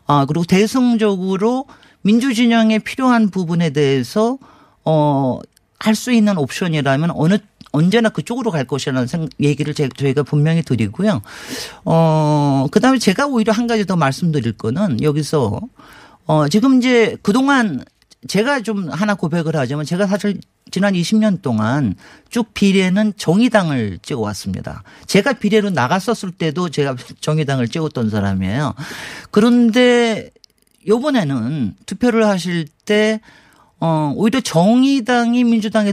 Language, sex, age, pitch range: Korean, male, 40-59, 145-215 Hz